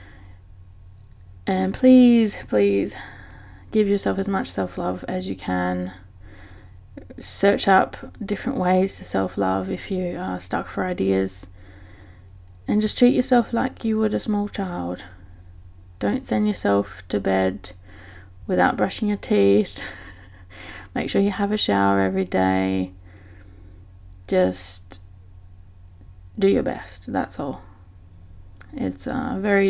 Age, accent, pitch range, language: 20-39, British, 90-100 Hz, English